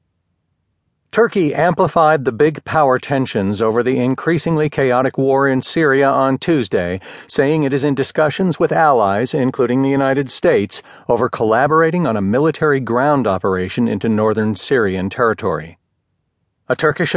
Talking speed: 135 wpm